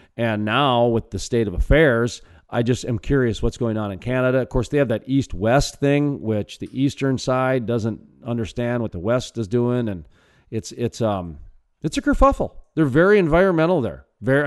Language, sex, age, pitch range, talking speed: English, male, 40-59, 110-155 Hz, 190 wpm